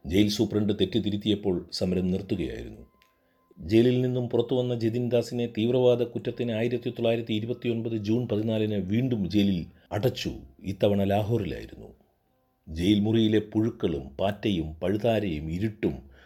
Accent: native